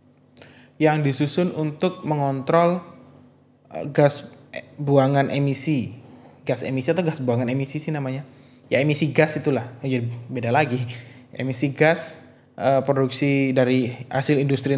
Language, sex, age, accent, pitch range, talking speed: Indonesian, male, 20-39, native, 130-155 Hz, 115 wpm